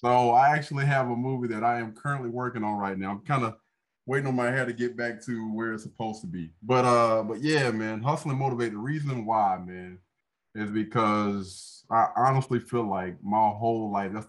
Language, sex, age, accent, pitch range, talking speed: English, male, 20-39, American, 105-130 Hz, 215 wpm